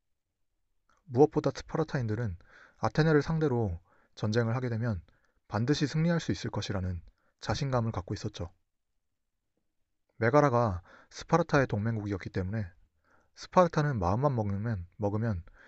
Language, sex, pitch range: Korean, male, 95-140 Hz